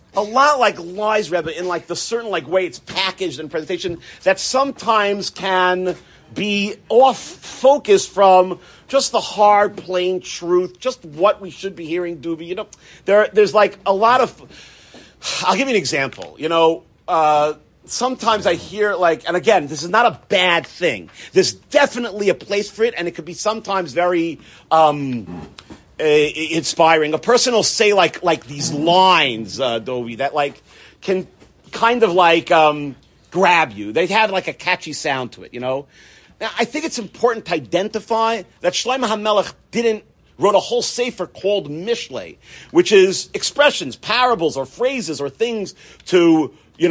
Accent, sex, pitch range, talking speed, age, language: American, male, 170-225 Hz, 175 wpm, 40-59, English